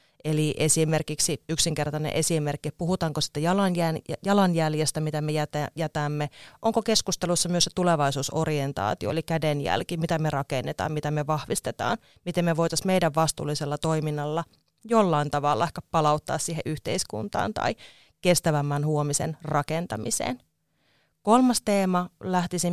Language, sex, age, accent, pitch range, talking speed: Finnish, female, 30-49, native, 150-175 Hz, 110 wpm